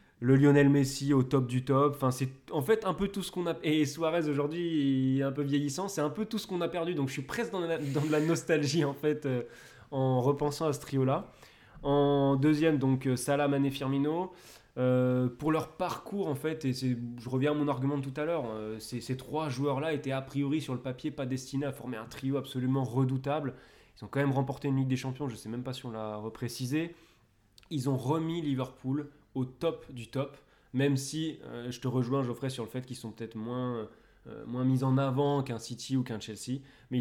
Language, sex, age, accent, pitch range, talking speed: French, male, 20-39, French, 125-145 Hz, 235 wpm